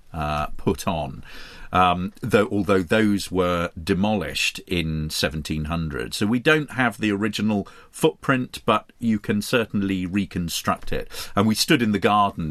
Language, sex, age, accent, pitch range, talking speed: English, male, 40-59, British, 90-115 Hz, 145 wpm